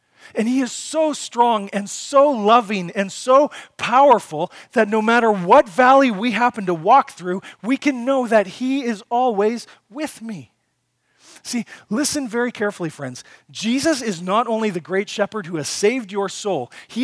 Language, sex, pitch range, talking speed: English, male, 175-230 Hz, 170 wpm